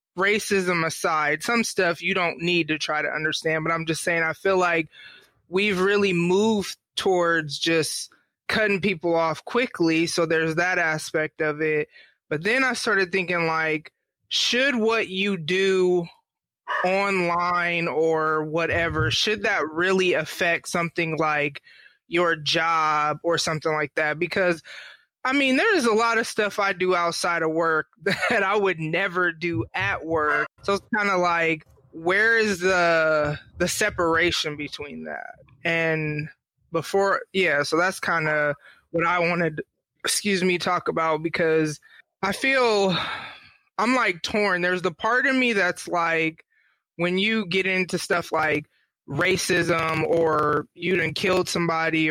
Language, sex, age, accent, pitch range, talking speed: English, male, 20-39, American, 160-195 Hz, 150 wpm